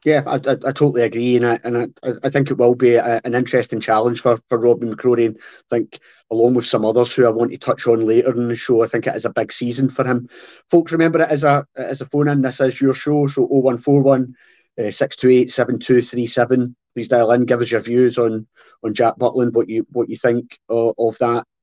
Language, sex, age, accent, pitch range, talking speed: English, male, 30-49, British, 120-140 Hz, 245 wpm